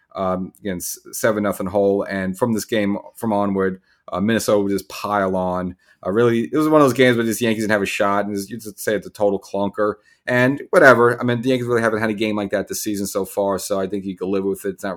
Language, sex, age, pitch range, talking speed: English, male, 30-49, 95-110 Hz, 270 wpm